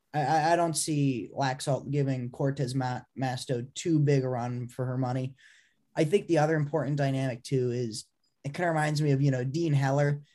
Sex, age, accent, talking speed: male, 10-29, American, 185 wpm